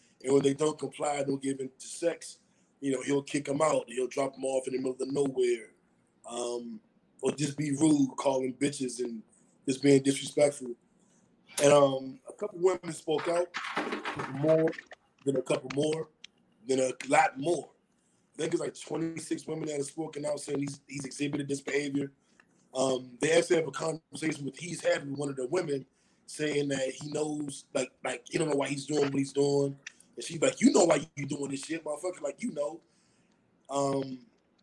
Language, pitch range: English, 135-165 Hz